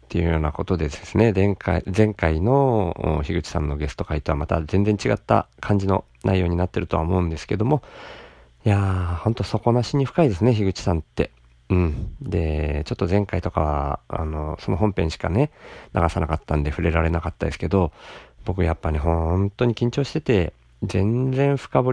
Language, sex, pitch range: Japanese, male, 80-100 Hz